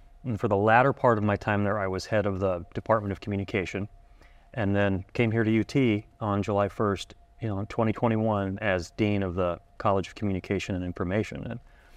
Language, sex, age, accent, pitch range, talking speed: English, male, 30-49, American, 95-115 Hz, 200 wpm